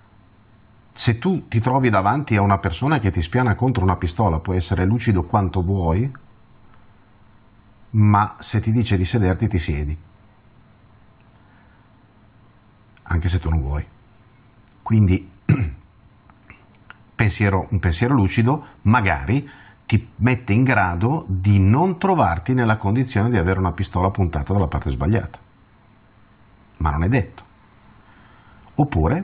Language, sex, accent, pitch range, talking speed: Italian, male, native, 90-115 Hz, 120 wpm